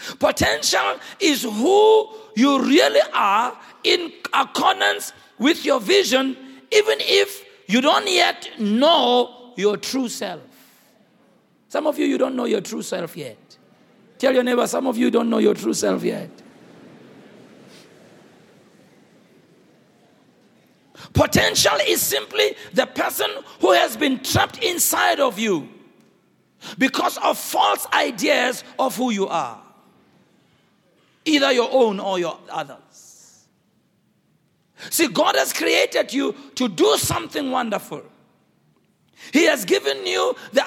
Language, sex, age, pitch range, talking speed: English, male, 50-69, 235-360 Hz, 120 wpm